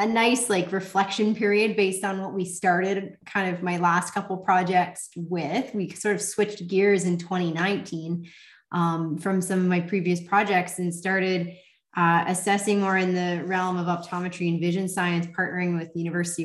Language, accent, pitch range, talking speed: English, American, 170-200 Hz, 175 wpm